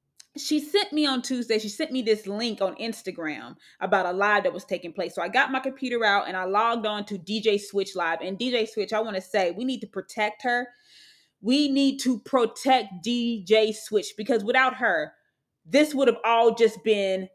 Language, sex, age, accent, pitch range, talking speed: English, female, 20-39, American, 215-315 Hz, 210 wpm